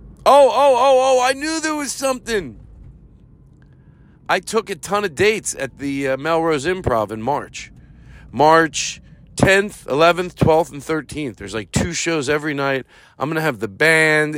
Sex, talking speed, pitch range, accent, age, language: male, 165 wpm, 120-170 Hz, American, 50-69, English